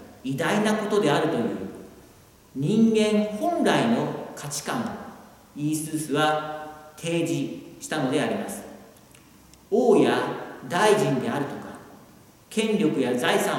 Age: 50-69